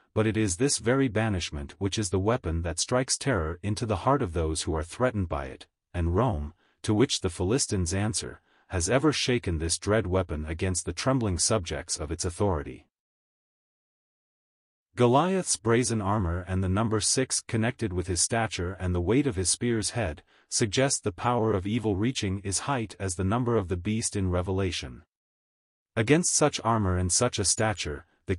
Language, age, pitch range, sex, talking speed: English, 40-59, 90-120 Hz, male, 180 wpm